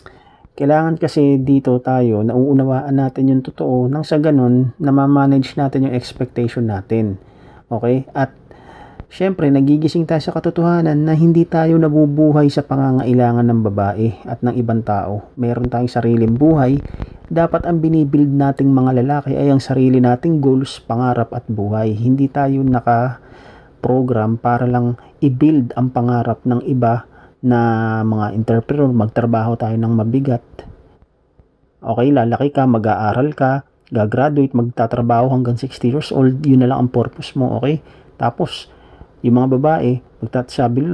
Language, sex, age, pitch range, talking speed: Filipino, male, 40-59, 115-140 Hz, 140 wpm